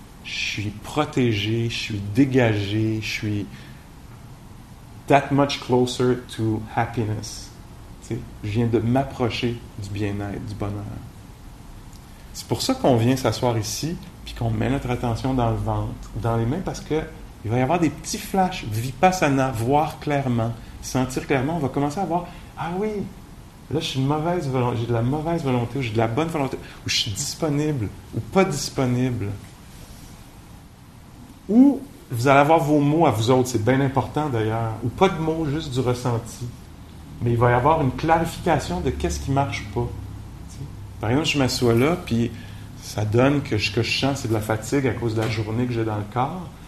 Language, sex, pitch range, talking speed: English, male, 110-140 Hz, 190 wpm